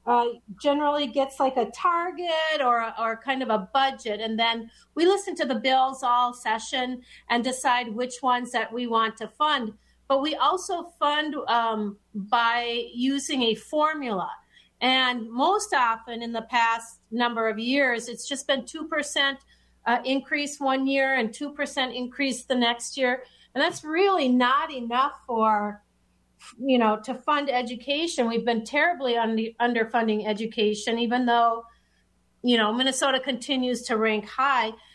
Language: English